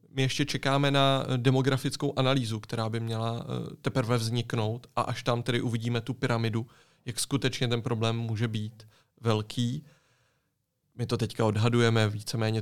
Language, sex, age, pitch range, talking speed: Czech, male, 30-49, 120-140 Hz, 145 wpm